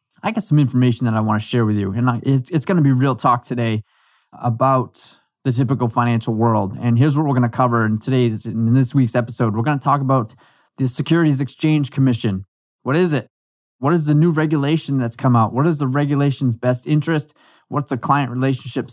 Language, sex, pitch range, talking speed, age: English, male, 115-140 Hz, 210 wpm, 20-39